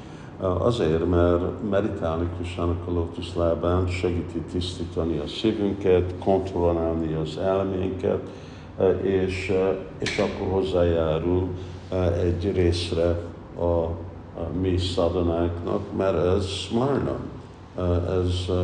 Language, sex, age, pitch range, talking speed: Hungarian, male, 50-69, 85-95 Hz, 85 wpm